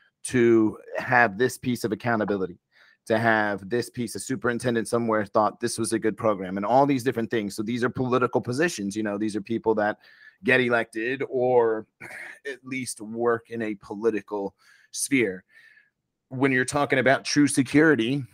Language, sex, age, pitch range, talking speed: English, male, 30-49, 110-130 Hz, 165 wpm